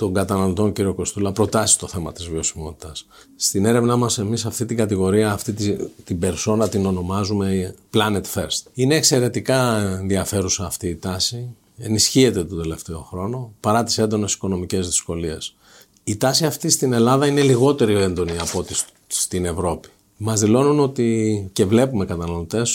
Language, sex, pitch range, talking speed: Greek, male, 95-115 Hz, 150 wpm